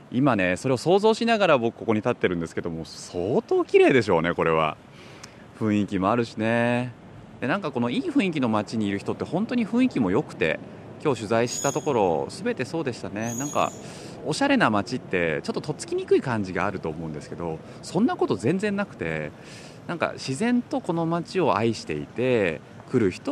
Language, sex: Japanese, male